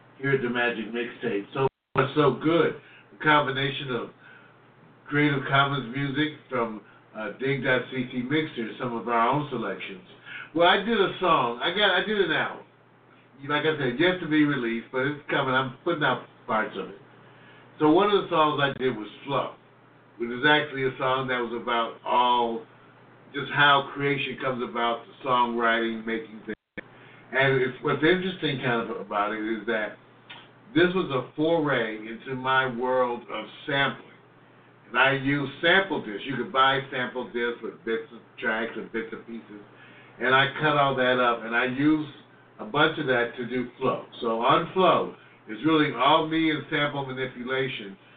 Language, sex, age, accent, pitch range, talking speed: English, male, 60-79, American, 115-150 Hz, 175 wpm